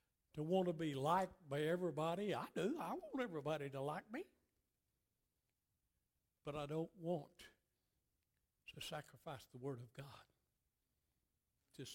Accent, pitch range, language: American, 115-165 Hz, English